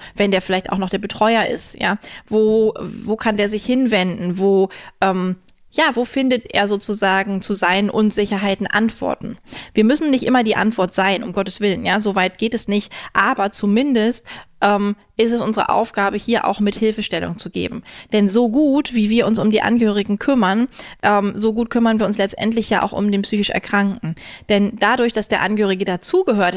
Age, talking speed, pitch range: 20-39, 185 wpm, 195-225 Hz